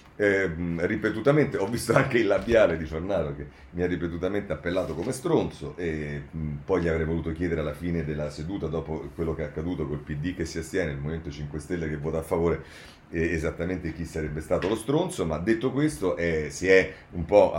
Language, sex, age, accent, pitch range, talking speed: Italian, male, 40-59, native, 80-120 Hz, 205 wpm